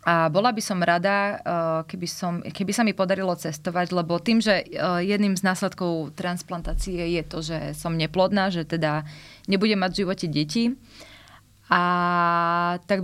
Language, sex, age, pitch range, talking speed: Slovak, female, 20-39, 170-200 Hz, 150 wpm